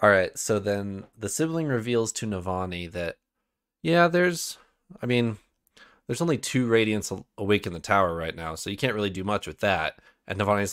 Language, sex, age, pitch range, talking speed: English, male, 20-39, 100-130 Hz, 190 wpm